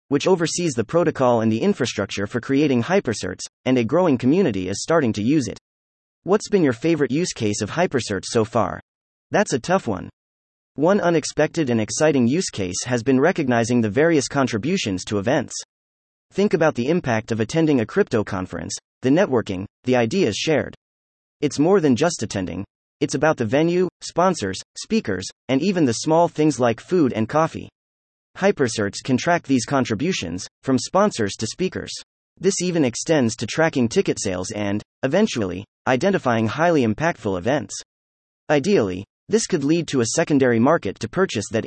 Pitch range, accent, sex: 110-160 Hz, American, male